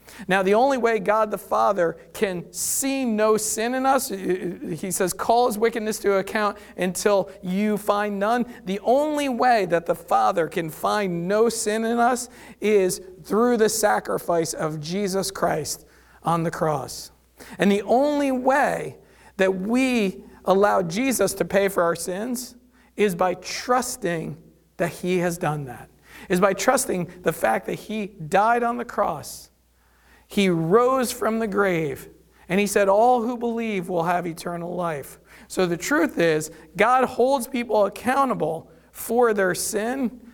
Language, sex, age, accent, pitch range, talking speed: English, male, 50-69, American, 170-225 Hz, 155 wpm